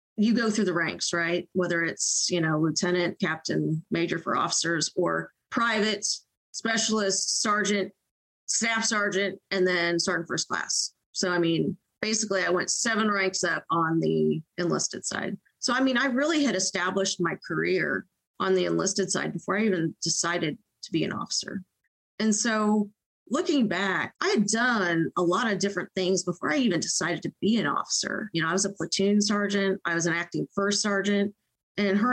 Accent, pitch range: American, 180-225 Hz